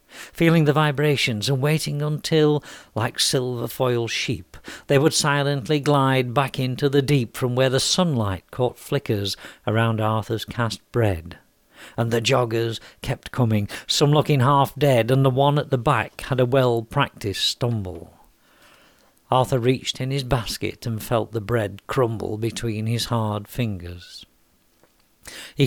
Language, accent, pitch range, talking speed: English, British, 110-140 Hz, 145 wpm